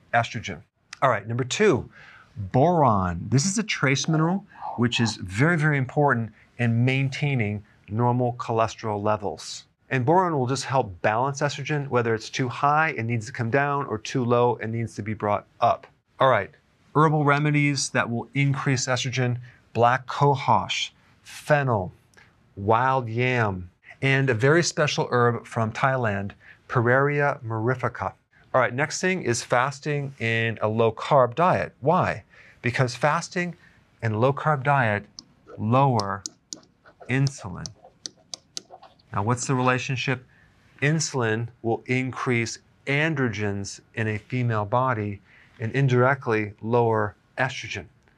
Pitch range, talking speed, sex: 115-140 Hz, 130 wpm, male